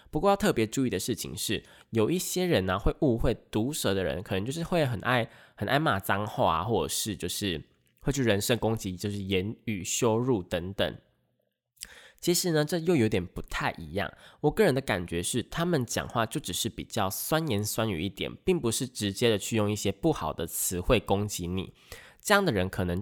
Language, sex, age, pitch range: Chinese, male, 20-39, 95-120 Hz